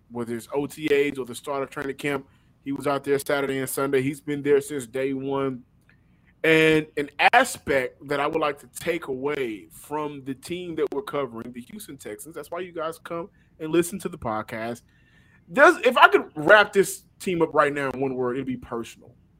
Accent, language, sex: American, English, male